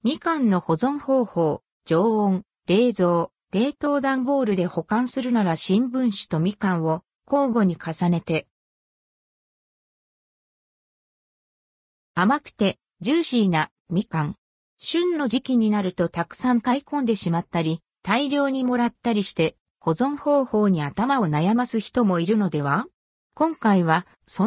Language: Japanese